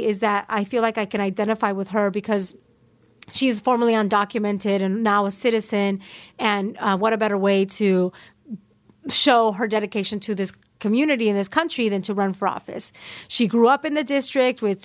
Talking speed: 190 wpm